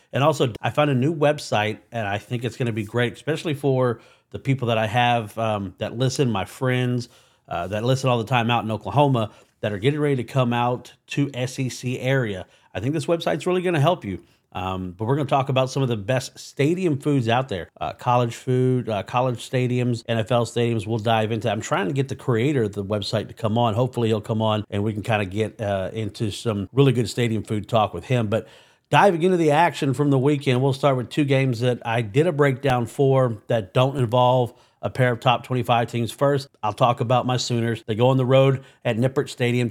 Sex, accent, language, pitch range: male, American, English, 115-140 Hz